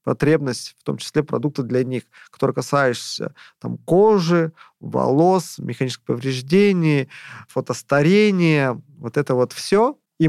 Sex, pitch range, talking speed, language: male, 125-155 Hz, 110 wpm, Russian